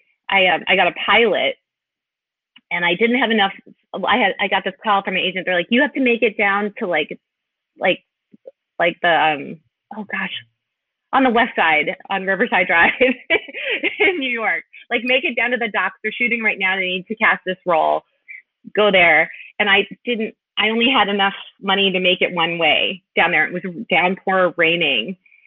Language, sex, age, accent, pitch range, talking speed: English, female, 30-49, American, 175-215 Hz, 200 wpm